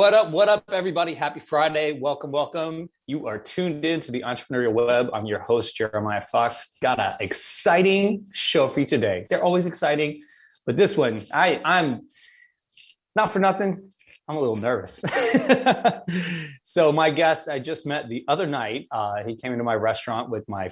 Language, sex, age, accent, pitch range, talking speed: English, male, 30-49, American, 110-155 Hz, 175 wpm